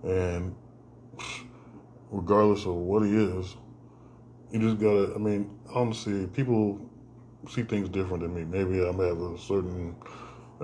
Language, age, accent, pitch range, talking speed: English, 10-29, American, 90-110 Hz, 140 wpm